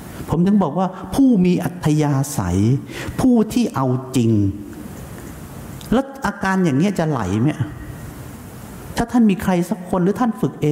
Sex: male